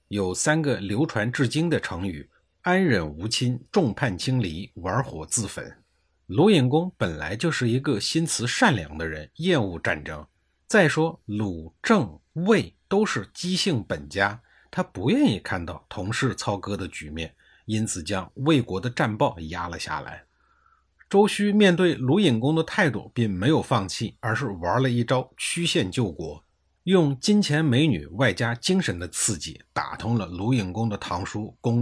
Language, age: Chinese, 50-69